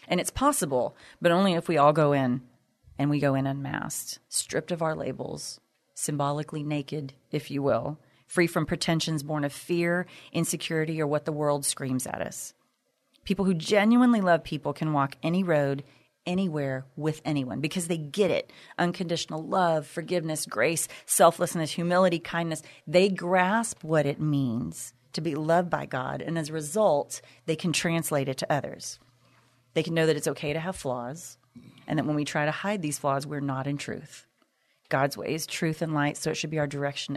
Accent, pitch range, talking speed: American, 140-170 Hz, 185 wpm